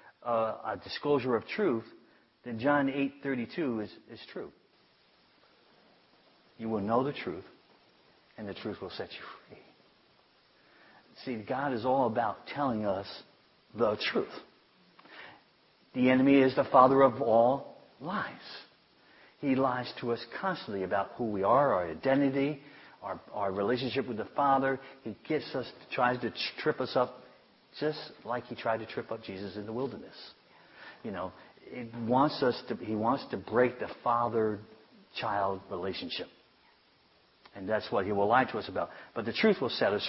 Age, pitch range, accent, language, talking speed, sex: 50-69, 110-140 Hz, American, English, 160 wpm, male